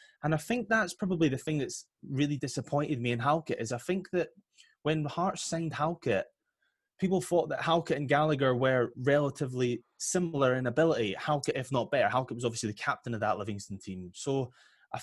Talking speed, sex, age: 190 wpm, male, 20-39